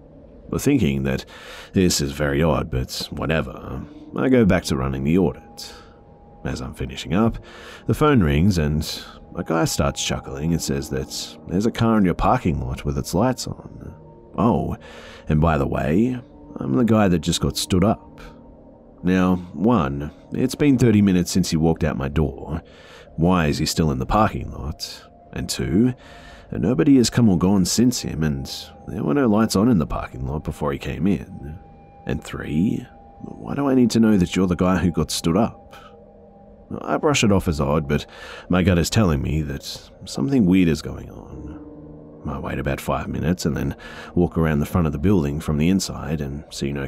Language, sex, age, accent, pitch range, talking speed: English, male, 30-49, Australian, 75-95 Hz, 195 wpm